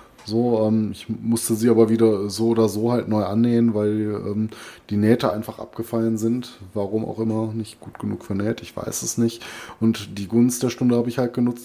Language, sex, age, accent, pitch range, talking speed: German, male, 20-39, German, 100-115 Hz, 205 wpm